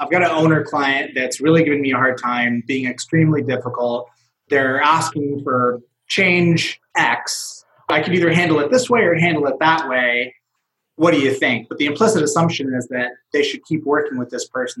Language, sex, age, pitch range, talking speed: English, male, 30-49, 125-160 Hz, 200 wpm